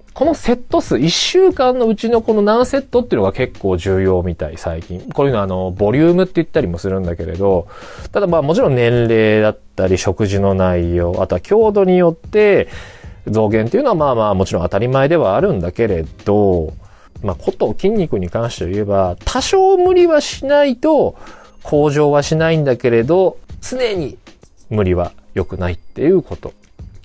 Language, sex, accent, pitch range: Japanese, male, native, 95-160 Hz